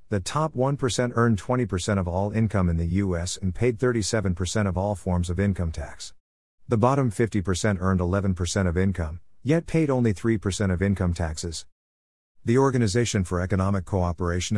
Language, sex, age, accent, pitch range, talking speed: English, male, 50-69, American, 90-120 Hz, 160 wpm